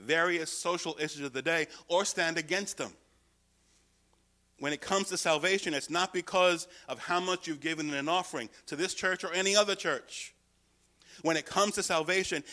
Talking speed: 180 wpm